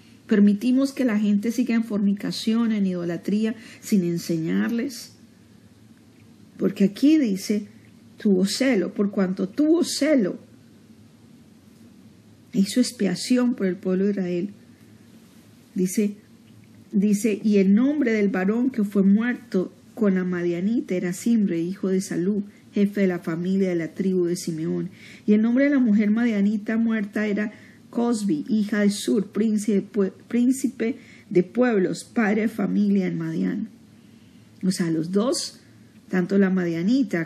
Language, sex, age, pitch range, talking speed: Spanish, female, 40-59, 190-240 Hz, 130 wpm